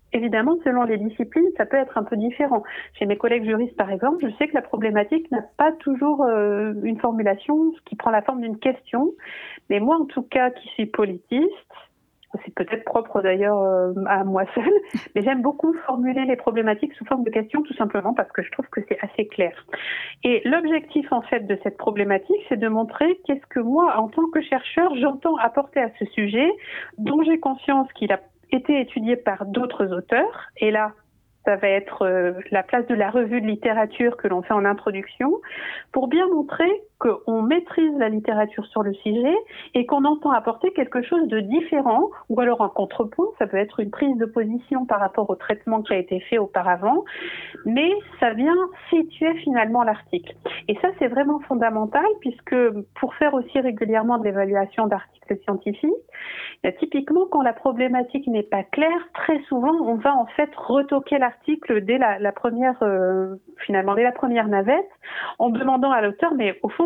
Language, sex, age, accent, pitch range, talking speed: French, female, 50-69, French, 215-295 Hz, 185 wpm